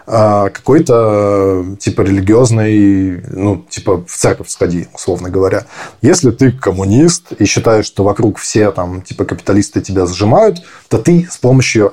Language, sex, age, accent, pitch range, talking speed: Russian, male, 20-39, native, 100-120 Hz, 135 wpm